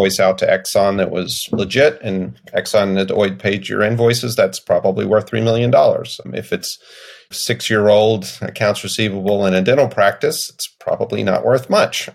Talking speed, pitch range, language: 160 wpm, 95-115 Hz, English